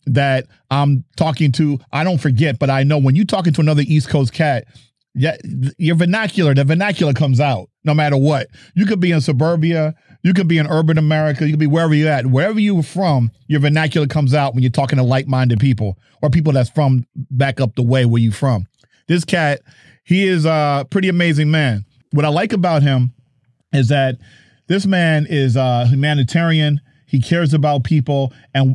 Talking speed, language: 195 wpm, English